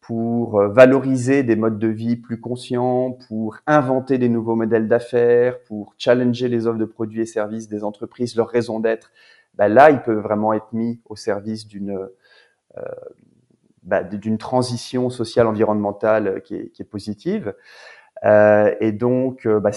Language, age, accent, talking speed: English, 30-49, French, 160 wpm